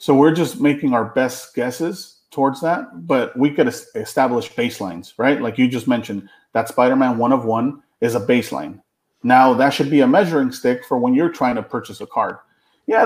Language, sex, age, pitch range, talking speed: English, male, 30-49, 120-145 Hz, 200 wpm